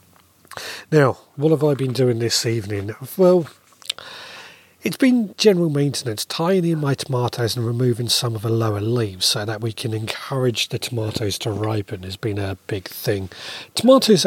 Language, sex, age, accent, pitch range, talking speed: English, male, 40-59, British, 110-165 Hz, 165 wpm